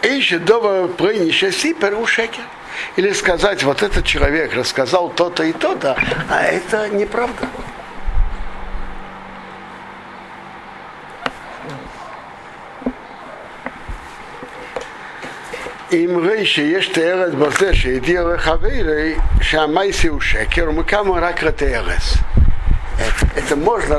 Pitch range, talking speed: 150-215 Hz, 40 wpm